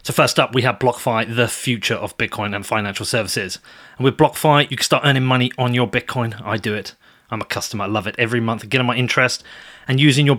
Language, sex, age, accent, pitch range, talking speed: English, male, 30-49, British, 115-140 Hz, 235 wpm